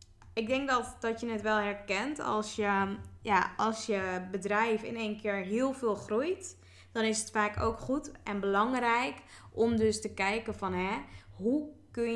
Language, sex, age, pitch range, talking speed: Dutch, female, 20-39, 195-240 Hz, 165 wpm